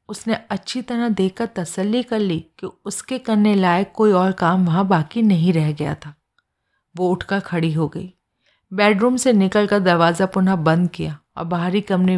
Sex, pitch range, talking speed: female, 170-210 Hz, 170 wpm